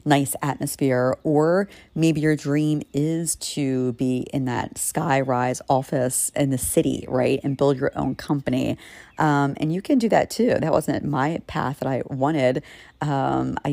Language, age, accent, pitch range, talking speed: English, 40-59, American, 140-165 Hz, 170 wpm